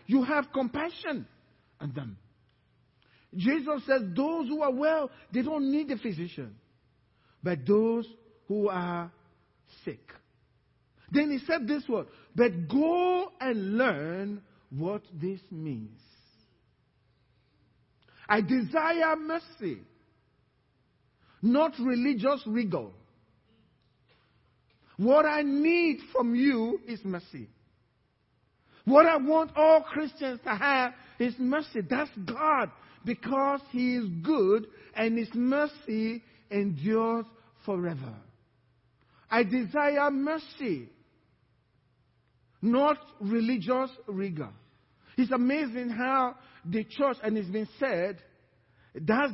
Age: 50-69